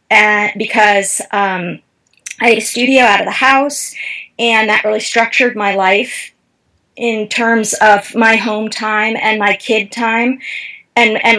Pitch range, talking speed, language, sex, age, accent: 200-245 Hz, 150 wpm, English, female, 30-49, American